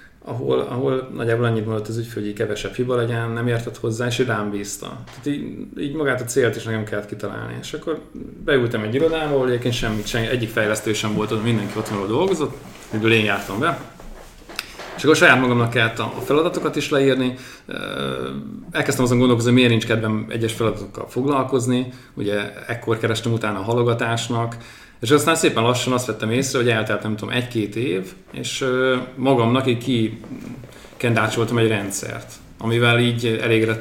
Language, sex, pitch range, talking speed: Hungarian, male, 110-130 Hz, 165 wpm